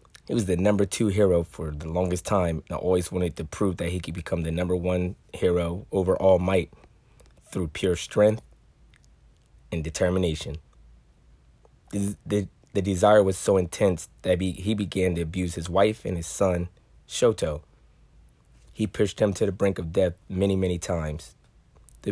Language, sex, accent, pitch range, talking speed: English, male, American, 80-95 Hz, 160 wpm